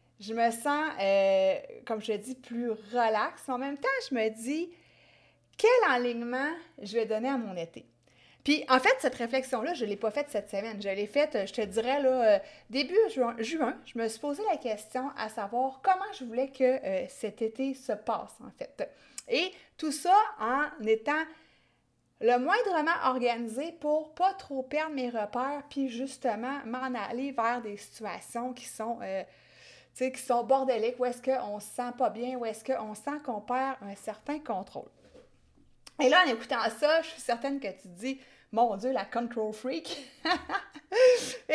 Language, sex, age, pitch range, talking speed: French, female, 30-49, 225-290 Hz, 190 wpm